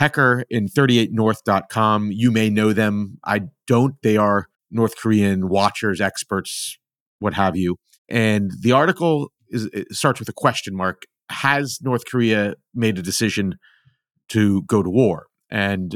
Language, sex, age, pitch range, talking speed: English, male, 40-59, 105-125 Hz, 140 wpm